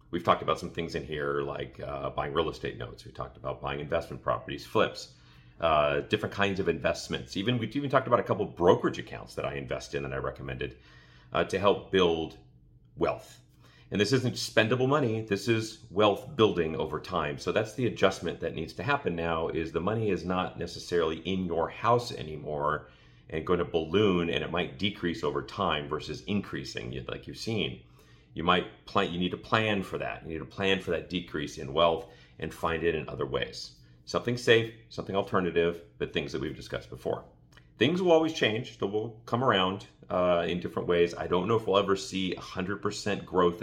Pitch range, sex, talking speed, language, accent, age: 70-100 Hz, male, 200 wpm, English, American, 40-59